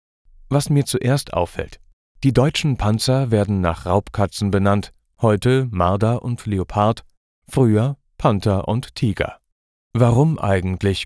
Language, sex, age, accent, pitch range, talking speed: German, male, 40-59, German, 95-120 Hz, 115 wpm